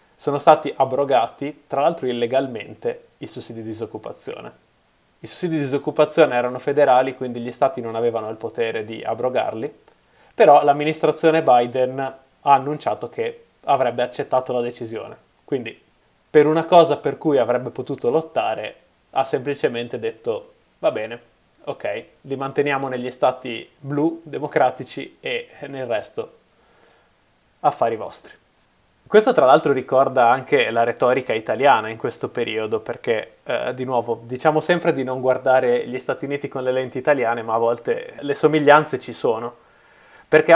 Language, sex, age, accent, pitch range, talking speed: Italian, male, 20-39, native, 125-155 Hz, 140 wpm